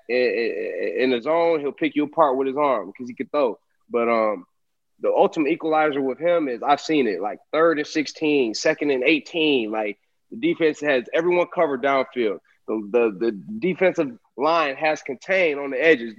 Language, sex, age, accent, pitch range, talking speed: English, male, 20-39, American, 120-160 Hz, 180 wpm